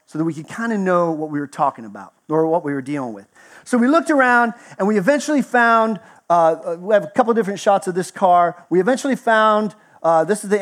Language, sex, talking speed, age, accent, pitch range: English, male, 245 wpm, 40-59, American, 160-225 Hz